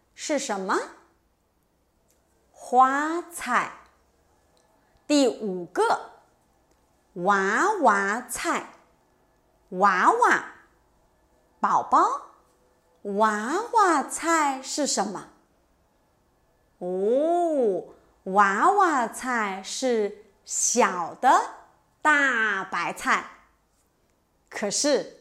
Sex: female